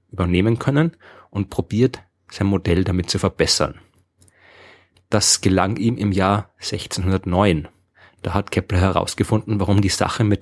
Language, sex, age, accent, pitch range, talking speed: German, male, 30-49, German, 95-110 Hz, 130 wpm